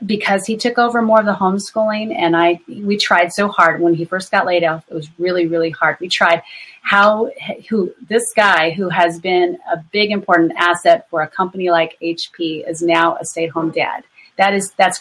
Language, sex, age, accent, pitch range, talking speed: English, female, 30-49, American, 175-215 Hz, 210 wpm